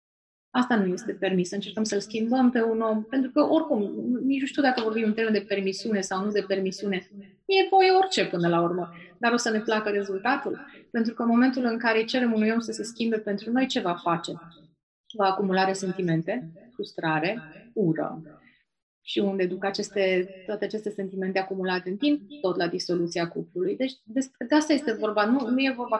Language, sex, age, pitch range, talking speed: Romanian, female, 30-49, 190-245 Hz, 195 wpm